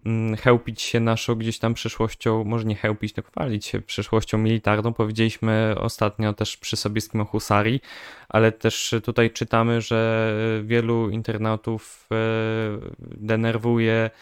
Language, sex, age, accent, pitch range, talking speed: Polish, male, 20-39, native, 110-120 Hz, 120 wpm